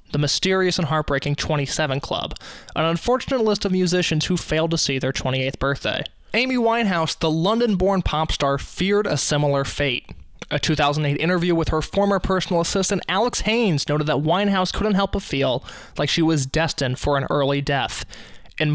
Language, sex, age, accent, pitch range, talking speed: English, male, 20-39, American, 145-195 Hz, 175 wpm